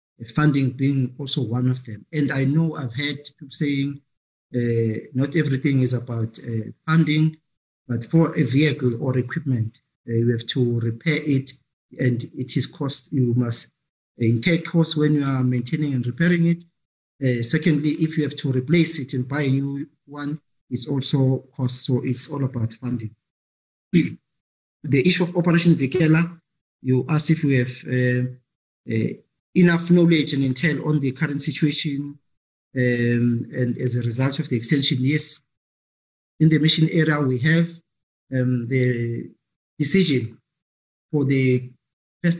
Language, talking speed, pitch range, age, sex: English, 155 wpm, 125-155 Hz, 50-69, male